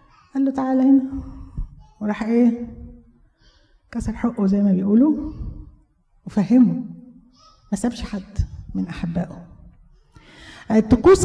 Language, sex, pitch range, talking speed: Arabic, female, 190-245 Hz, 95 wpm